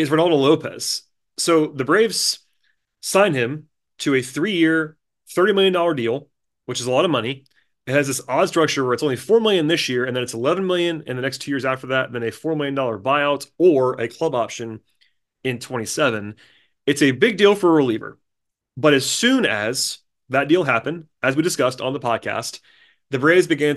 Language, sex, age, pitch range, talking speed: English, male, 30-49, 125-155 Hz, 200 wpm